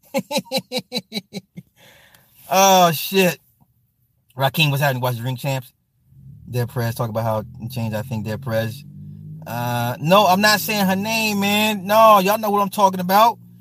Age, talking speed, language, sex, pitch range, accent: 30-49, 150 wpm, English, male, 140-215 Hz, American